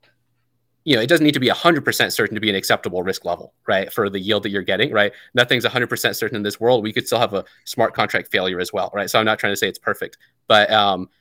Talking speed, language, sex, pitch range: 270 wpm, English, male, 105-130 Hz